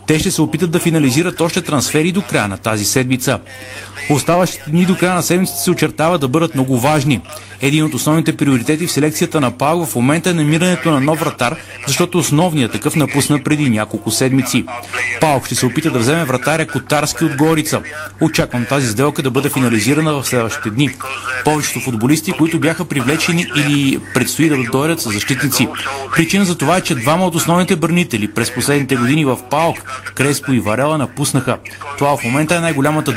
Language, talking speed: Bulgarian, 180 wpm